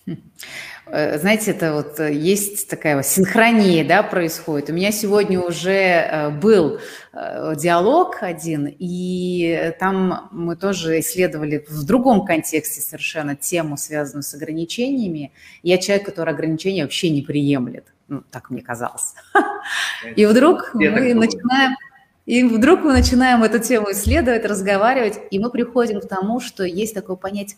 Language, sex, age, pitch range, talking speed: Russian, female, 30-49, 160-225 Hz, 125 wpm